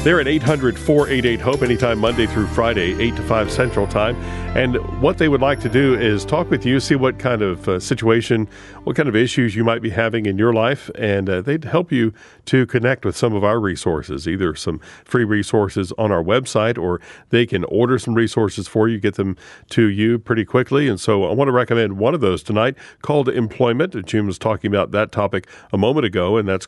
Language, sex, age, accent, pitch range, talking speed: English, male, 50-69, American, 100-120 Hz, 215 wpm